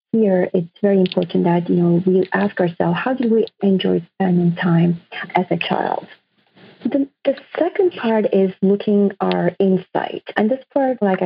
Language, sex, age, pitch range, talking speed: English, female, 40-59, 180-220 Hz, 165 wpm